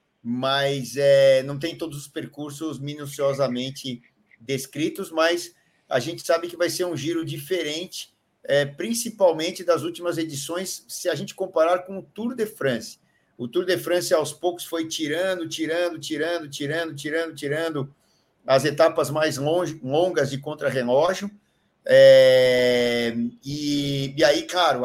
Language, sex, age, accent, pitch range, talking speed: Portuguese, male, 50-69, Brazilian, 140-170 Hz, 130 wpm